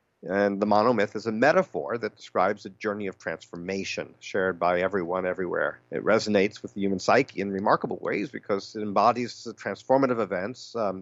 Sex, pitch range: male, 90-110 Hz